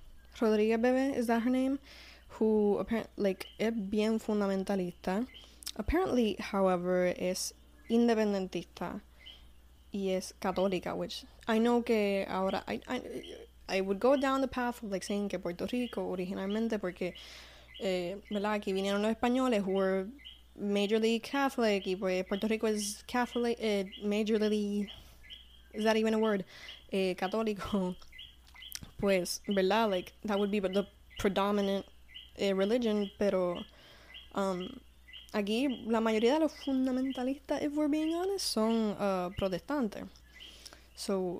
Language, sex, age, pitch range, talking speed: Spanish, female, 10-29, 185-230 Hz, 130 wpm